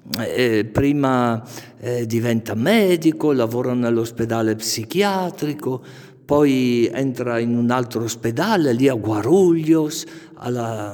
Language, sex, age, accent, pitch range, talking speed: Italian, male, 50-69, native, 115-155 Hz, 100 wpm